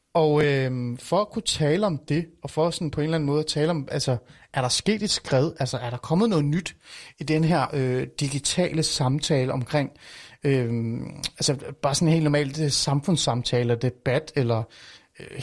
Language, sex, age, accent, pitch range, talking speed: Danish, male, 30-49, native, 130-165 Hz, 190 wpm